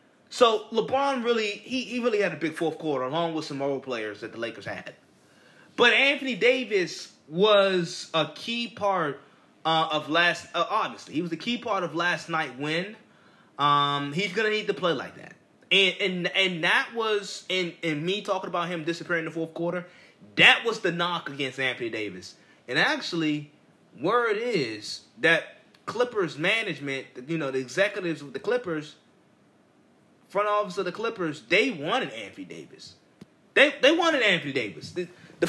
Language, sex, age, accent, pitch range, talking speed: English, male, 20-39, American, 160-215 Hz, 175 wpm